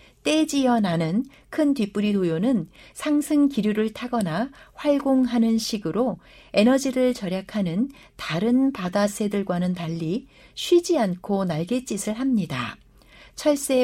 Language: Korean